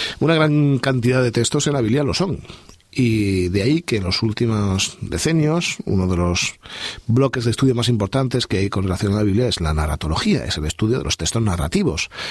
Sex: male